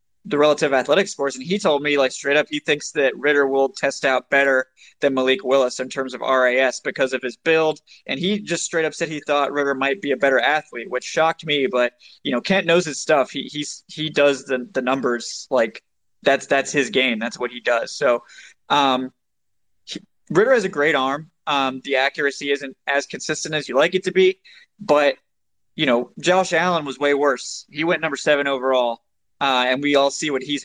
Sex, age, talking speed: male, 20-39, 210 wpm